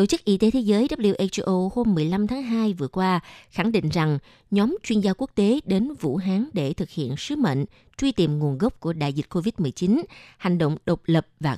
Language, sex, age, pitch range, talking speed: Vietnamese, female, 20-39, 155-210 Hz, 220 wpm